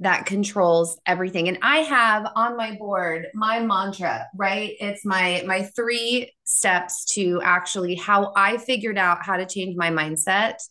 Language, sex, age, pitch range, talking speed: English, female, 20-39, 185-245 Hz, 155 wpm